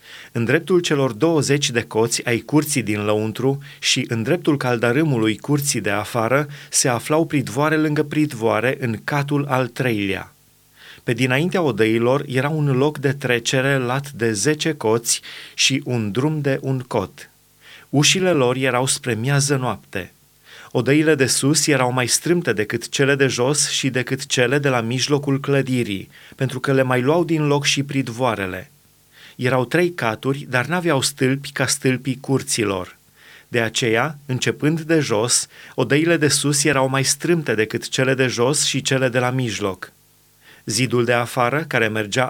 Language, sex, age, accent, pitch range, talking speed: Romanian, male, 30-49, native, 120-145 Hz, 155 wpm